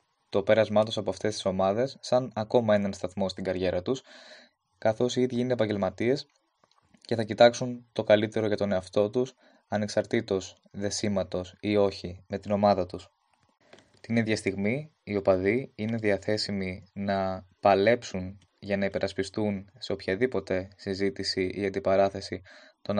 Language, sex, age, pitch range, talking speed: Greek, male, 20-39, 95-115 Hz, 140 wpm